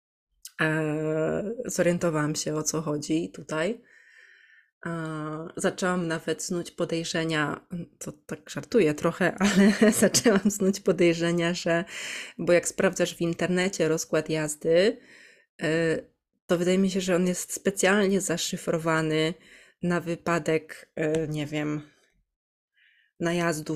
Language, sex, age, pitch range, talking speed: Polish, female, 20-39, 170-215 Hz, 100 wpm